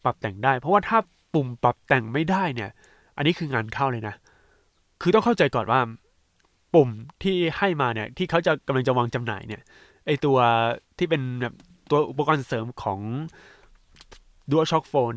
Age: 20-39